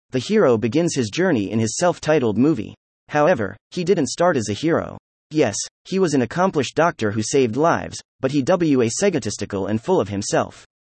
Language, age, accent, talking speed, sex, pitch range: English, 30-49, American, 180 wpm, male, 110-165 Hz